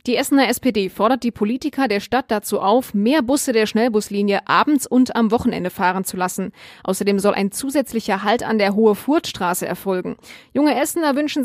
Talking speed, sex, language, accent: 180 wpm, female, German, German